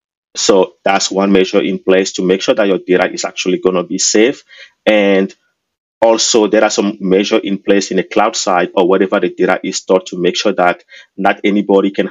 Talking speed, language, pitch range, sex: 215 wpm, English, 95-105 Hz, male